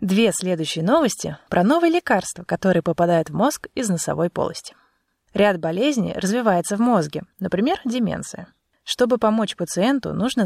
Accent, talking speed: native, 140 wpm